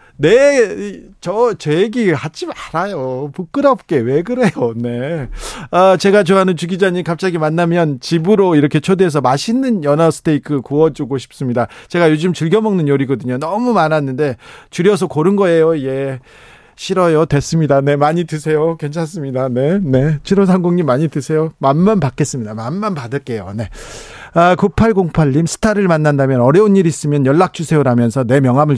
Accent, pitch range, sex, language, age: native, 130-185 Hz, male, Korean, 40-59